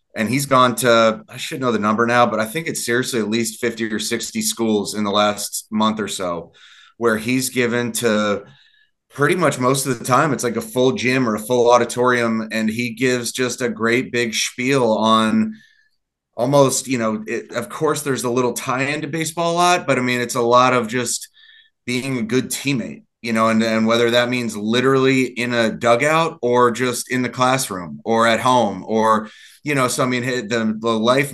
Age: 30-49